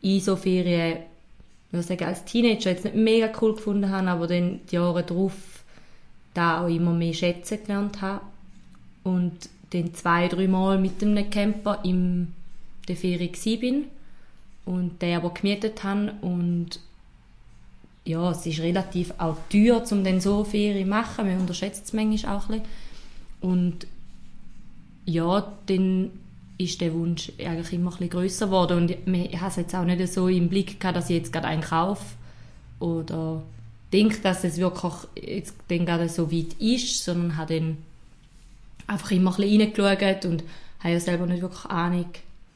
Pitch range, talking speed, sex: 170-195 Hz, 155 wpm, female